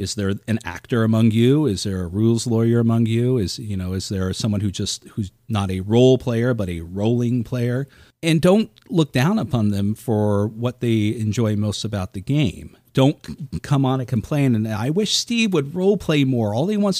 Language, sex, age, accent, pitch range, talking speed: English, male, 40-59, American, 105-135 Hz, 210 wpm